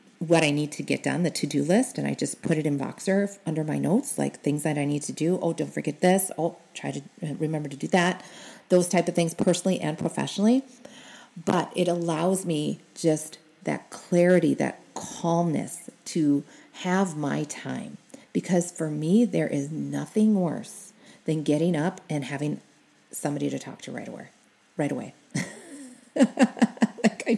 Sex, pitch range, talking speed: female, 155-205 Hz, 170 wpm